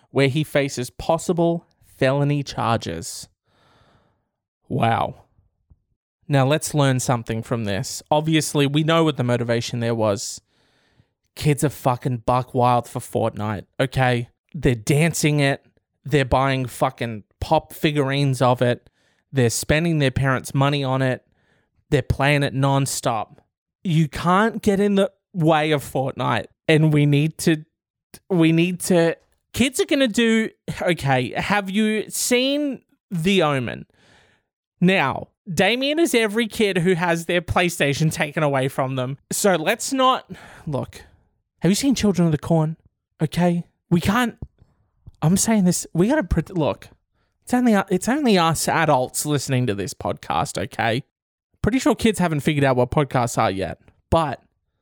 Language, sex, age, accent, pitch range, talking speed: English, male, 20-39, Australian, 125-180 Hz, 145 wpm